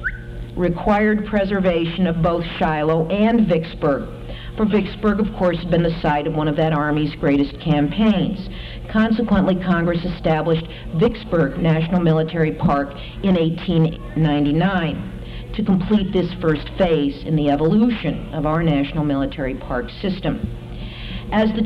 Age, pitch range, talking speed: 50-69, 155-200 Hz, 130 wpm